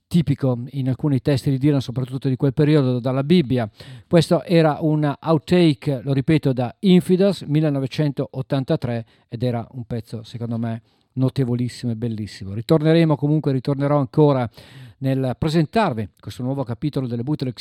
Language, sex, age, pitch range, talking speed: Italian, male, 50-69, 125-145 Hz, 140 wpm